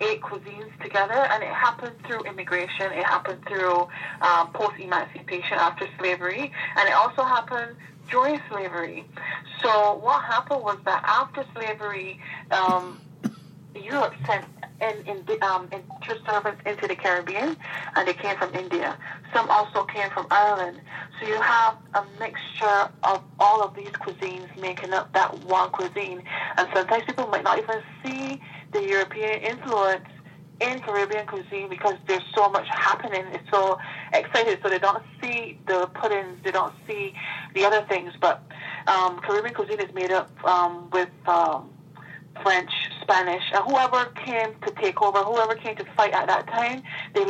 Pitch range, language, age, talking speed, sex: 180-220 Hz, English, 30-49, 155 wpm, female